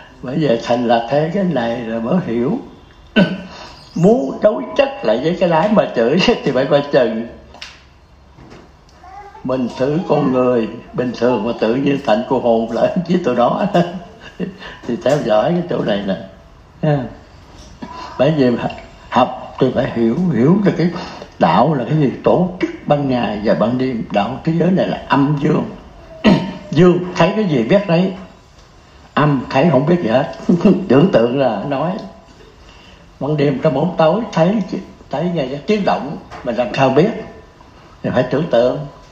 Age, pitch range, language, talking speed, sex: 60-79, 125-180 Hz, Vietnamese, 165 wpm, male